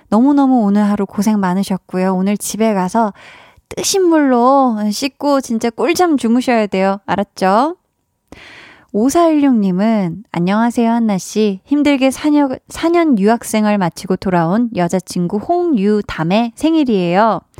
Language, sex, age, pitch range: Korean, female, 20-39, 200-270 Hz